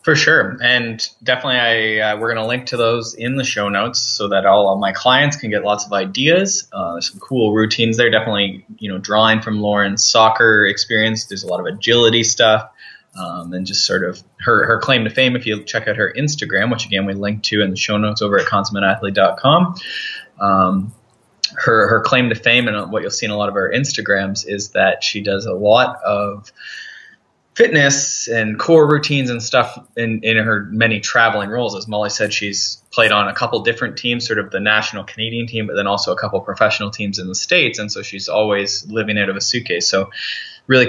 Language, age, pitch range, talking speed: English, 20-39, 100-120 Hz, 215 wpm